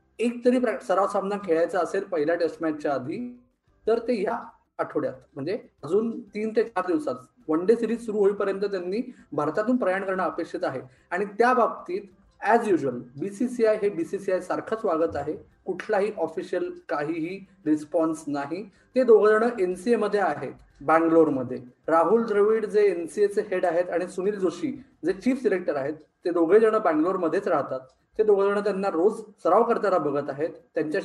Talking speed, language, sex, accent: 170 wpm, Marathi, male, native